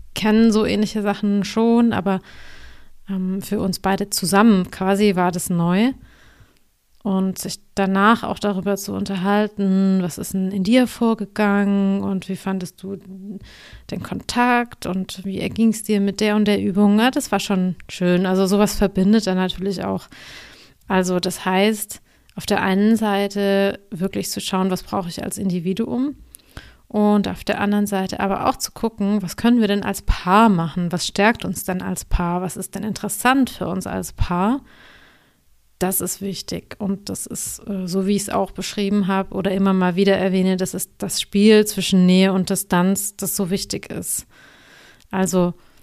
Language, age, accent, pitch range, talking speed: German, 30-49, German, 190-210 Hz, 170 wpm